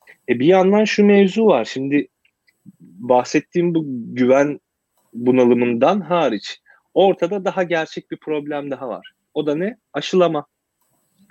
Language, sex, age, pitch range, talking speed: Turkish, male, 30-49, 130-170 Hz, 115 wpm